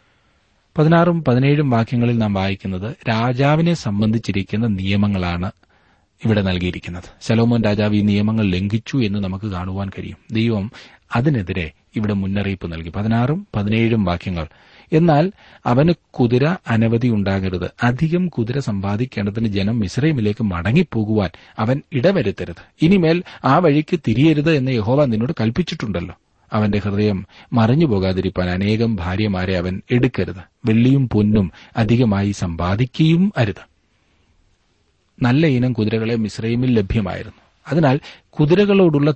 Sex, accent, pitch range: male, native, 100-130 Hz